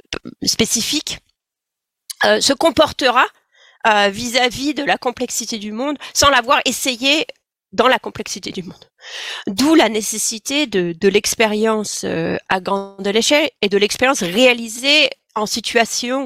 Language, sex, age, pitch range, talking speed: French, female, 40-59, 190-255 Hz, 130 wpm